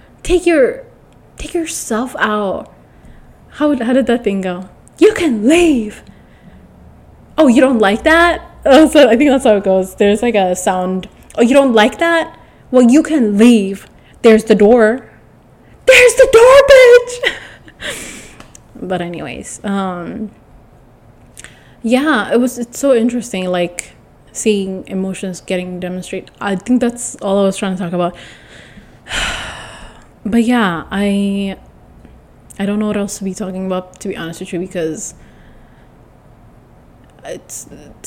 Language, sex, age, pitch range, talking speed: English, female, 20-39, 185-245 Hz, 140 wpm